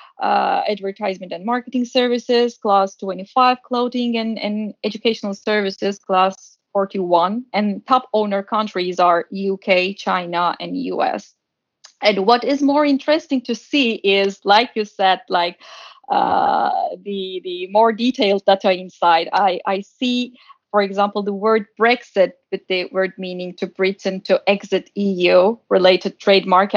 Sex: female